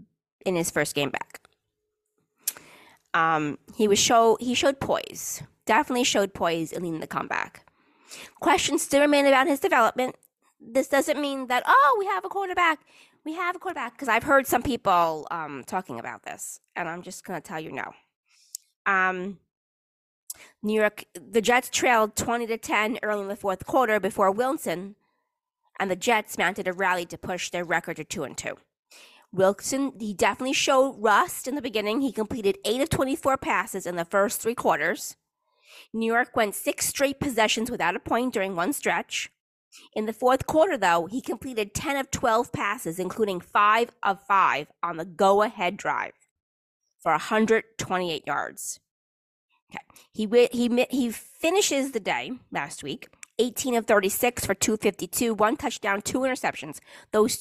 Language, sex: English, female